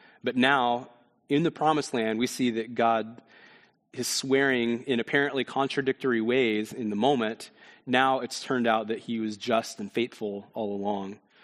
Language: English